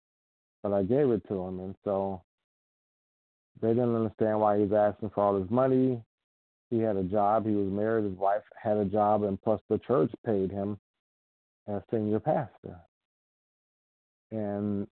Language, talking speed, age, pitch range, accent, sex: English, 165 wpm, 40-59, 100-115 Hz, American, male